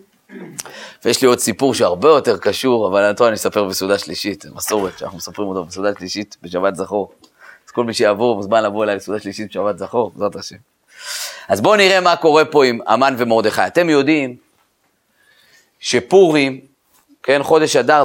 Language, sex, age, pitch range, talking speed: Hebrew, male, 30-49, 110-170 Hz, 155 wpm